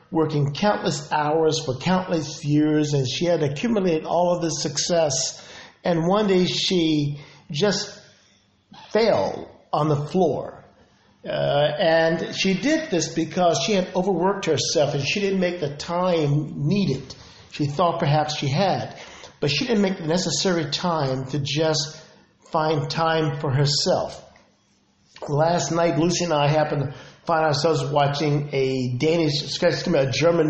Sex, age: male, 50-69